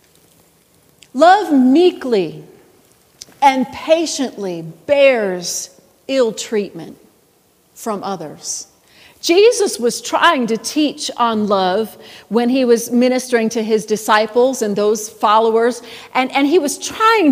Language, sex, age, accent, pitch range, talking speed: English, female, 40-59, American, 210-280 Hz, 105 wpm